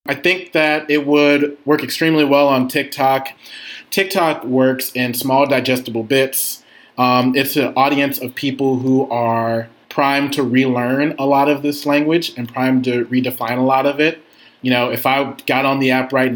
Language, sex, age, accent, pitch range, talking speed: English, male, 30-49, American, 120-140 Hz, 180 wpm